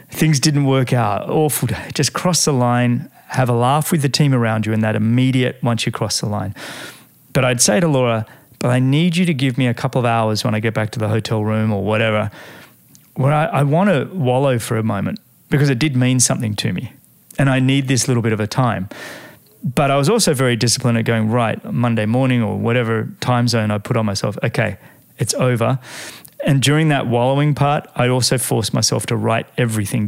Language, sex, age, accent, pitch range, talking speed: English, male, 30-49, Australian, 115-135 Hz, 220 wpm